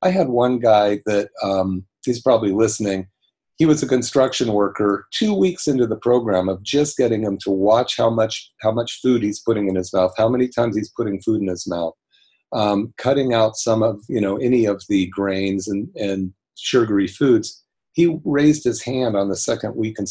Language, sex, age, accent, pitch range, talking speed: English, male, 40-59, American, 100-125 Hz, 210 wpm